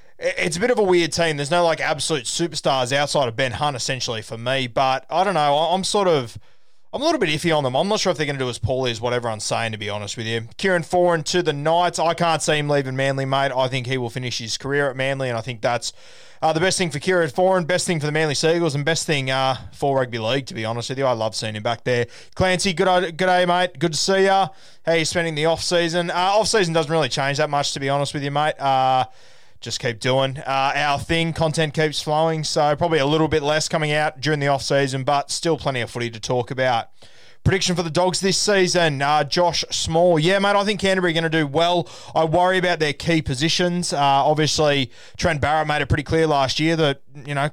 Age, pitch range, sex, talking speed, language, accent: 20-39, 135-170 Hz, male, 260 wpm, English, Australian